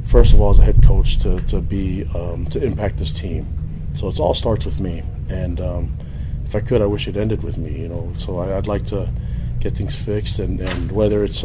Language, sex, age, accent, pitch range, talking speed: English, male, 40-59, American, 100-120 Hz, 240 wpm